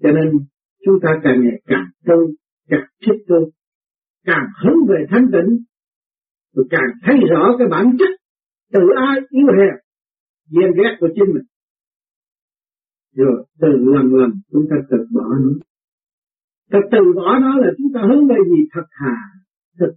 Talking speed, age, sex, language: 155 wpm, 50-69, male, Vietnamese